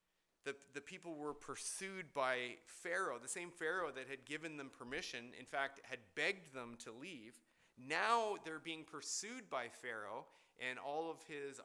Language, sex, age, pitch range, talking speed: English, male, 40-59, 115-160 Hz, 165 wpm